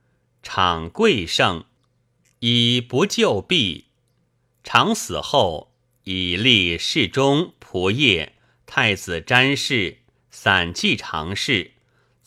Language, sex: Chinese, male